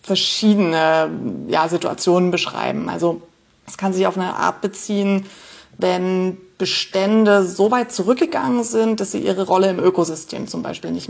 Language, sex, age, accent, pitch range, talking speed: German, female, 30-49, German, 170-205 Hz, 145 wpm